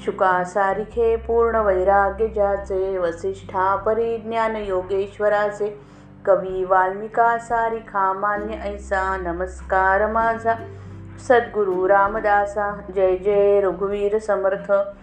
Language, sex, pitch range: Marathi, female, 185-220 Hz